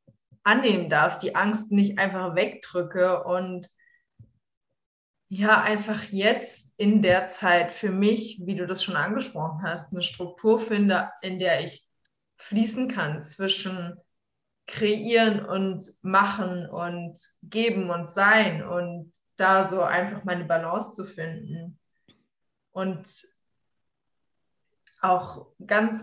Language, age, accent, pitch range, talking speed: German, 20-39, German, 180-210 Hz, 115 wpm